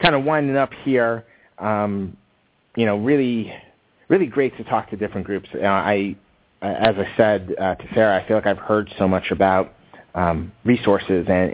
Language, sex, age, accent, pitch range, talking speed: English, male, 30-49, American, 95-115 Hz, 180 wpm